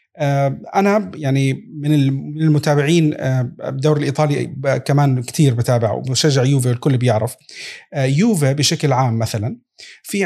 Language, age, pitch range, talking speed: Arabic, 40-59, 130-175 Hz, 105 wpm